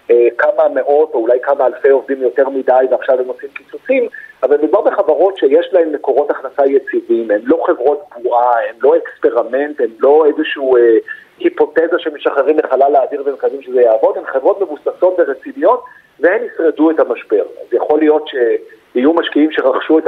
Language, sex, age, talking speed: Hebrew, male, 50-69, 160 wpm